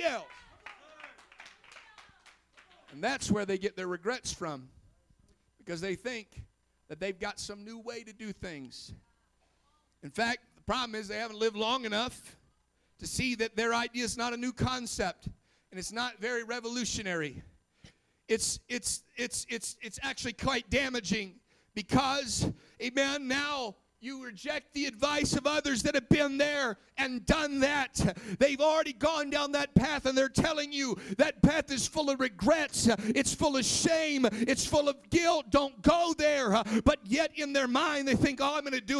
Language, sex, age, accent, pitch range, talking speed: English, male, 50-69, American, 225-280 Hz, 165 wpm